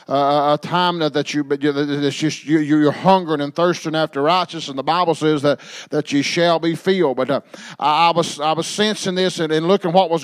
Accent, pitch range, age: American, 155-180 Hz, 40-59